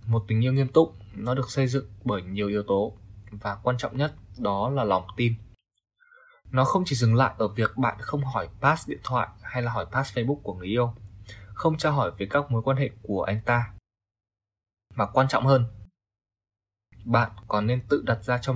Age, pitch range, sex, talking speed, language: 20-39, 105-135 Hz, male, 205 wpm, Vietnamese